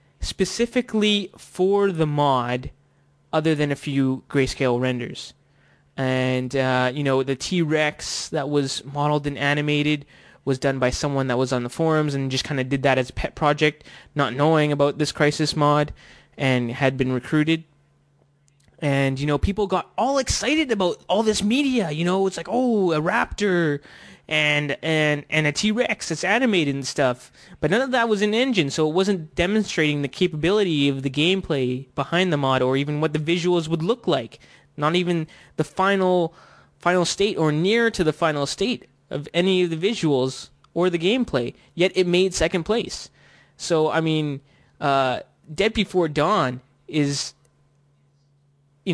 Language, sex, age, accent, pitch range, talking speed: English, male, 20-39, American, 140-180 Hz, 170 wpm